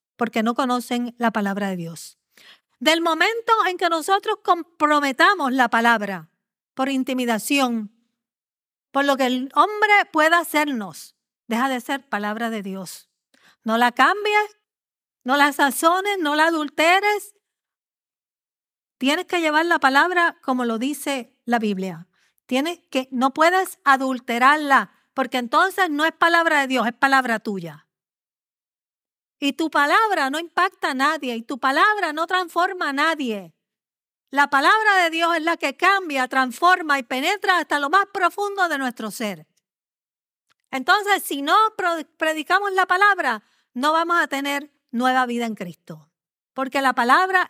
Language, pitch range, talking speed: Spanish, 240-345 Hz, 145 wpm